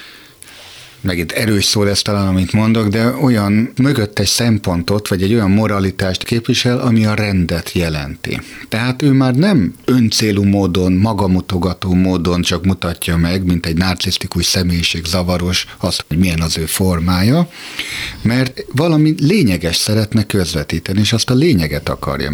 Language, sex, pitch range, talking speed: Hungarian, male, 85-115 Hz, 145 wpm